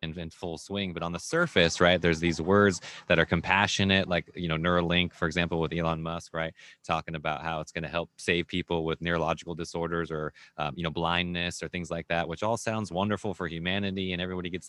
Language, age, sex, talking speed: English, 20-39, male, 225 wpm